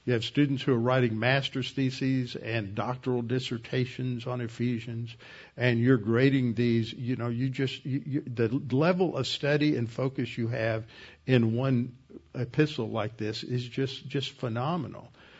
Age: 50-69